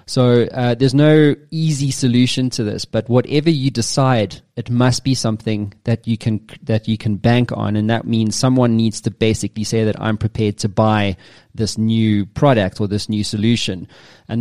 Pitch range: 110-130 Hz